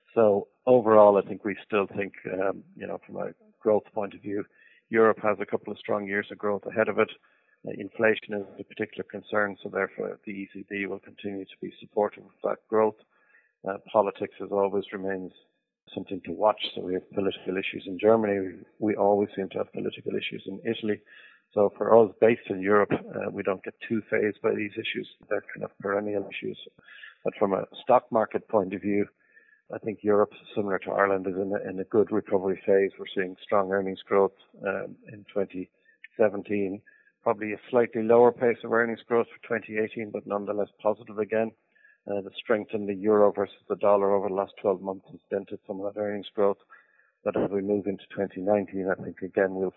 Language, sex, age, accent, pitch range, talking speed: English, male, 50-69, Irish, 95-110 Hz, 200 wpm